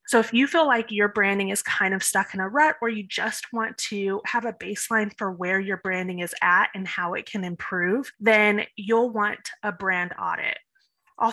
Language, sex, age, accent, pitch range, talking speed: English, female, 20-39, American, 200-240 Hz, 210 wpm